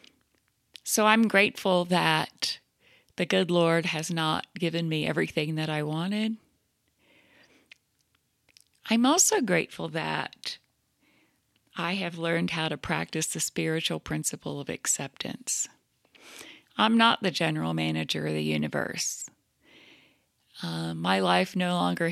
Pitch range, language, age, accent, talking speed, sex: 150-185 Hz, English, 40-59, American, 115 wpm, female